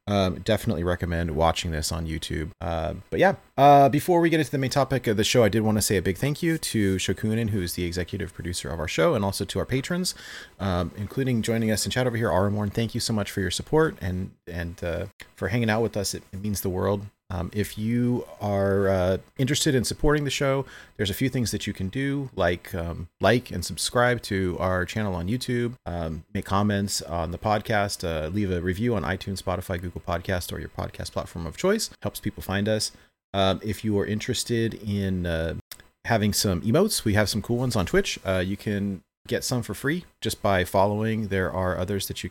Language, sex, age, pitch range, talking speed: English, male, 30-49, 90-115 Hz, 225 wpm